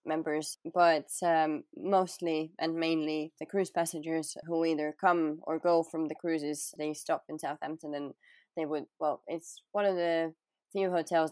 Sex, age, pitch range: female, 20-39, 150-175 Hz